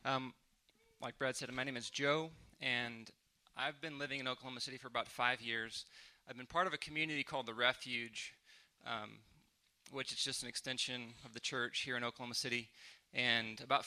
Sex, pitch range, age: male, 115-135 Hz, 20-39